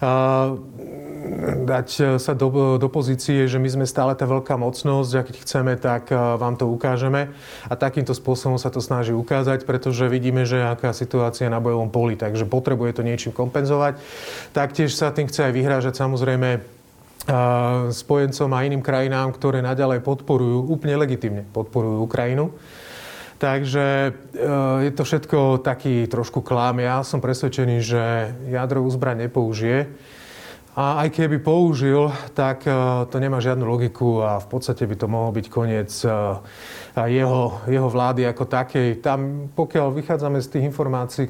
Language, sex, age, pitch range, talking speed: Slovak, male, 30-49, 120-135 Hz, 150 wpm